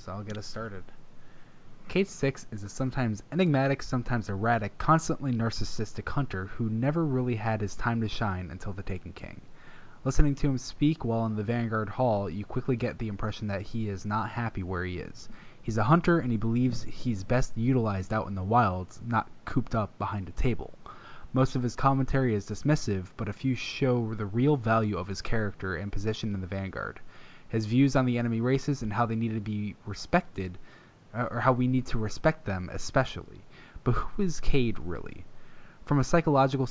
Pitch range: 100-130 Hz